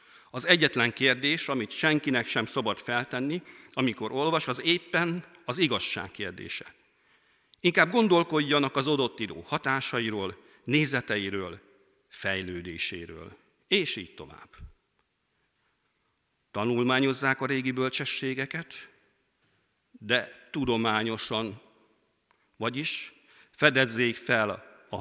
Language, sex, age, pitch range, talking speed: Hungarian, male, 50-69, 100-135 Hz, 85 wpm